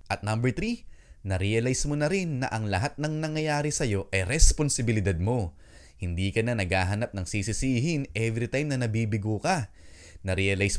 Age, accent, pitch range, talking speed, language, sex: 20-39, Filipino, 95-140 Hz, 155 wpm, English, male